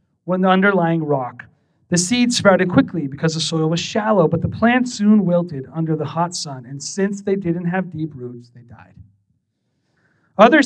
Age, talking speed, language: 30-49, 180 wpm, English